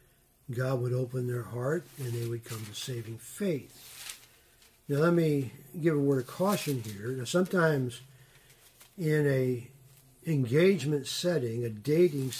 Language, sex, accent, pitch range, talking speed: English, male, American, 120-145 Hz, 140 wpm